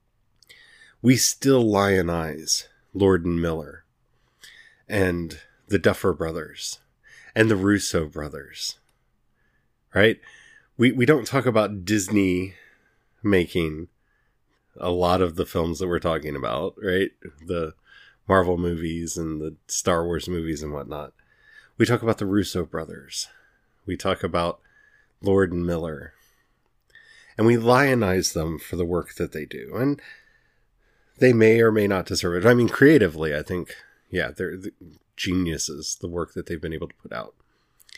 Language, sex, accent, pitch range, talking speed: English, male, American, 85-120 Hz, 140 wpm